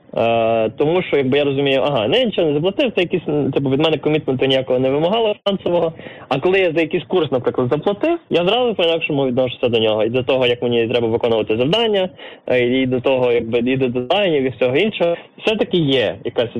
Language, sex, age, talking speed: Ukrainian, male, 20-39, 200 wpm